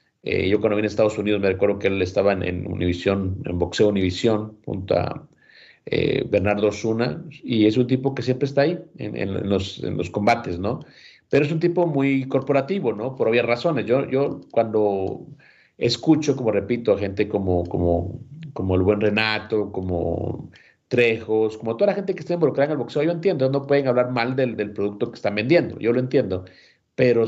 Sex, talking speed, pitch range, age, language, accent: male, 200 wpm, 105-135 Hz, 40-59, Spanish, Mexican